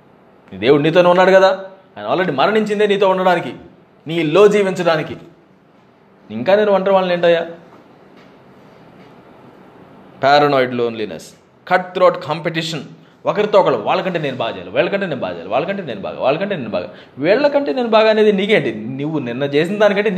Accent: native